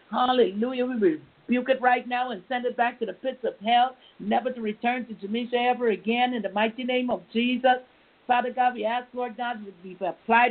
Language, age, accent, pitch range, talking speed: English, 60-79, American, 215-245 Hz, 210 wpm